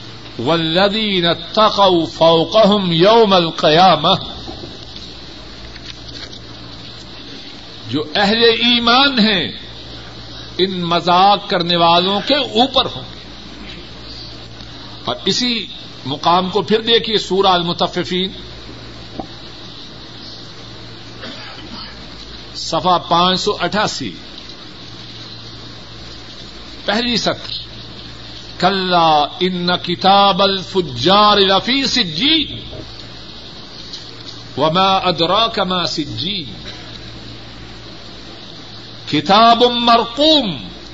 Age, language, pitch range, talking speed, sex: 60-79, Urdu, 165-215 Hz, 65 wpm, male